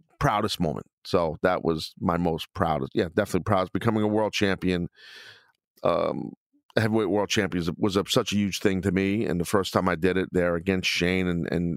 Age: 40-59